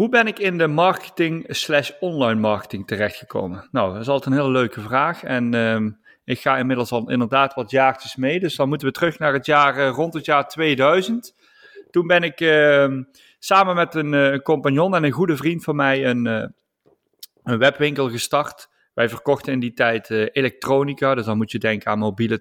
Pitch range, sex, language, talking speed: 115-145 Hz, male, Dutch, 200 wpm